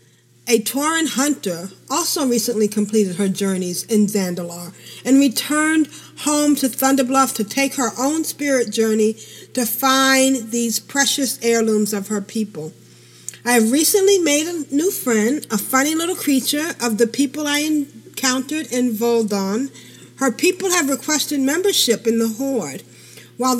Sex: female